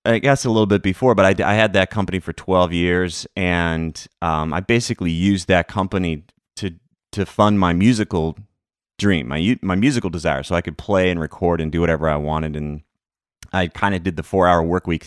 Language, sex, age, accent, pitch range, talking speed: English, male, 30-49, American, 80-95 Hz, 210 wpm